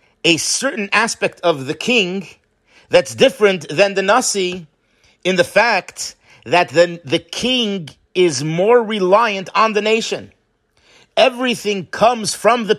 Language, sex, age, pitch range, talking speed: English, male, 50-69, 145-195 Hz, 130 wpm